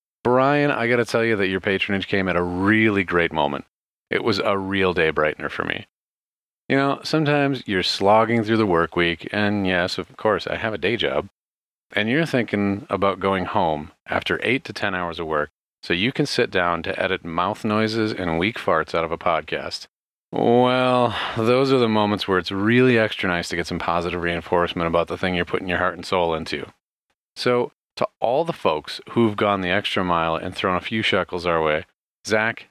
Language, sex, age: English, male, 30-49